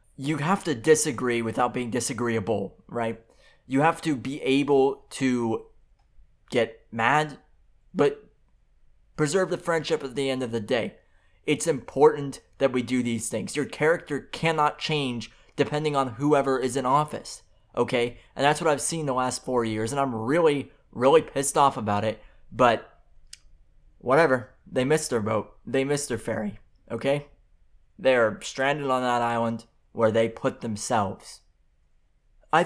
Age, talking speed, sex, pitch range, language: 20-39, 150 wpm, male, 115-140 Hz, English